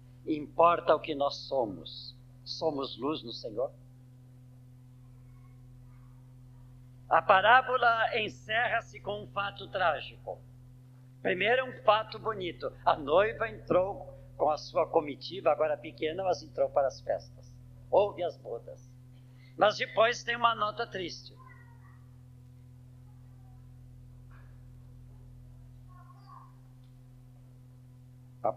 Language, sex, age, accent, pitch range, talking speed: Portuguese, male, 50-69, Brazilian, 125-160 Hz, 90 wpm